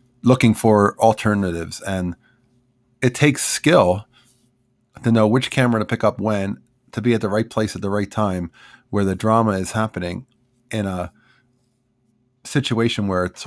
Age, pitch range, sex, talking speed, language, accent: 40-59, 95-120 Hz, male, 155 wpm, English, American